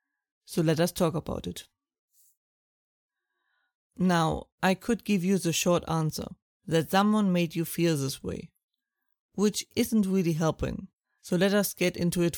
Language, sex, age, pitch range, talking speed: English, female, 30-49, 165-195 Hz, 150 wpm